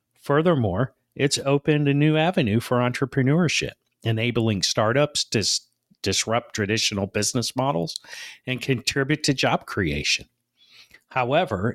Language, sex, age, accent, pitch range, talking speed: English, male, 50-69, American, 105-135 Hz, 105 wpm